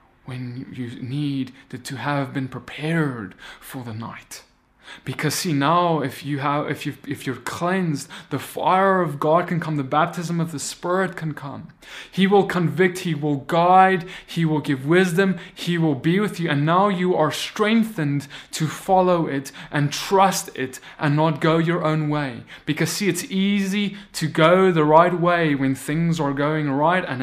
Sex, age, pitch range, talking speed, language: male, 20-39, 140-175 Hz, 180 wpm, English